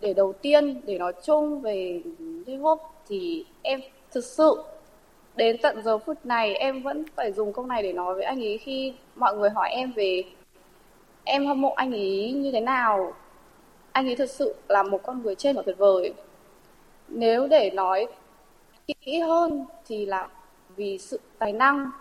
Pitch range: 210-295 Hz